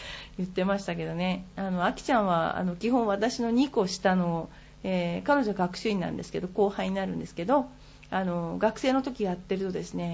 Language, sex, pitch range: Japanese, female, 175-235 Hz